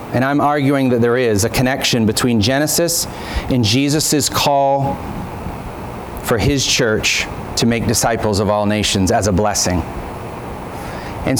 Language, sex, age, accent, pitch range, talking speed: English, male, 40-59, American, 120-160 Hz, 135 wpm